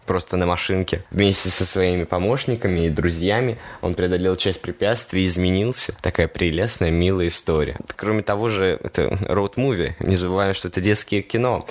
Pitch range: 85-100 Hz